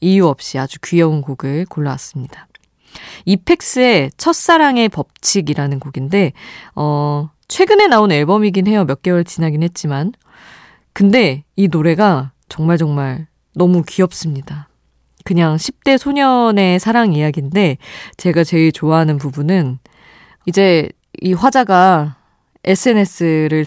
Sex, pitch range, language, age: female, 150-205 Hz, Korean, 20-39